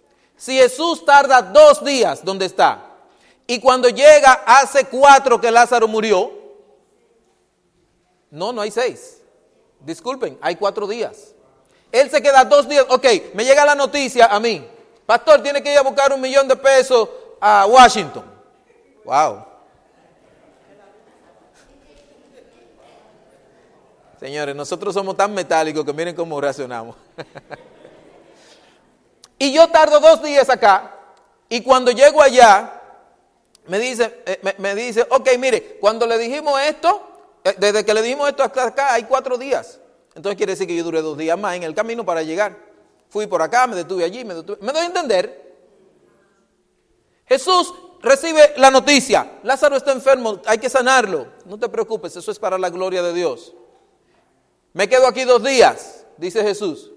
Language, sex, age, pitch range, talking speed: Spanish, male, 40-59, 210-305 Hz, 150 wpm